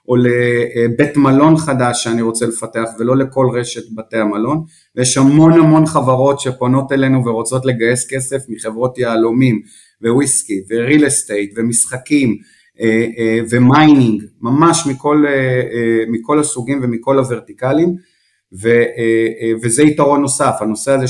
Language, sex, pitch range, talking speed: Hebrew, male, 115-145 Hz, 115 wpm